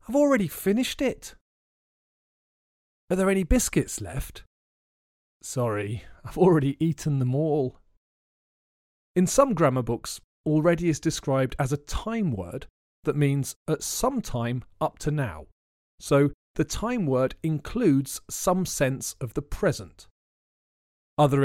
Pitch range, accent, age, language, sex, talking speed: 115-175 Hz, British, 40-59, English, male, 125 wpm